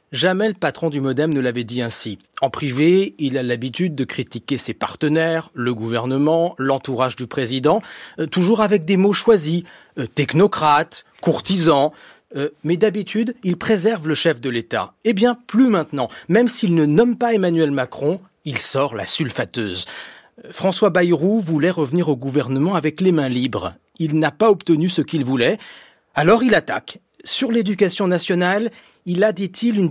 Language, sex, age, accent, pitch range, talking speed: French, male, 40-59, French, 145-210 Hz, 165 wpm